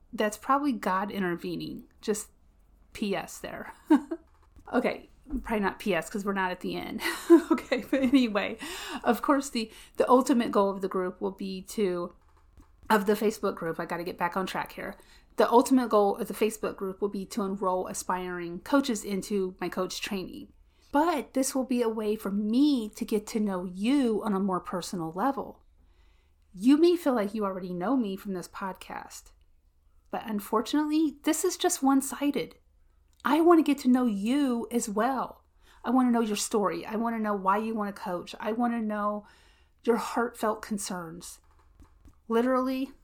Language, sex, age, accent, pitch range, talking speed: English, female, 30-49, American, 185-245 Hz, 180 wpm